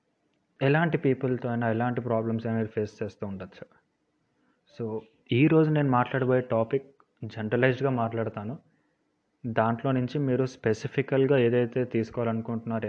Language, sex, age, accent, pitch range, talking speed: Telugu, male, 20-39, native, 115-135 Hz, 105 wpm